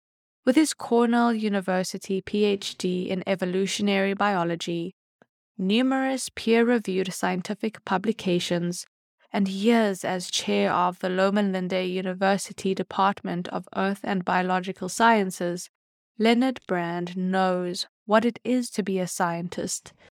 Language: English